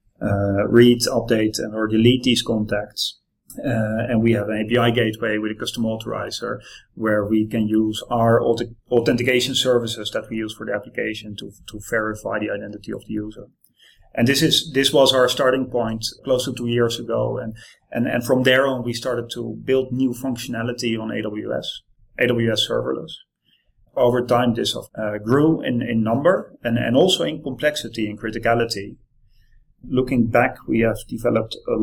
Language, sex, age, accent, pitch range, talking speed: English, male, 30-49, Dutch, 110-125 Hz, 170 wpm